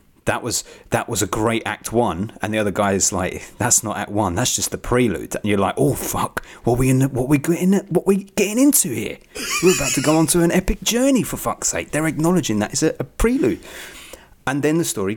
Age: 30-49